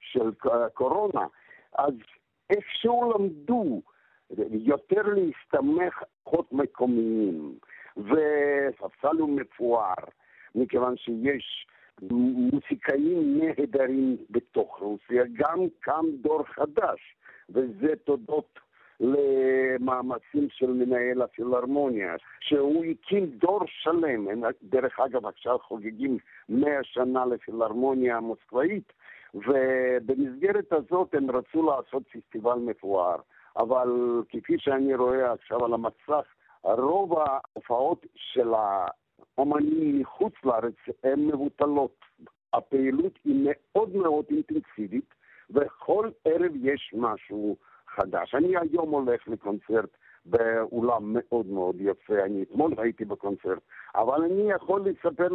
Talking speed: 95 wpm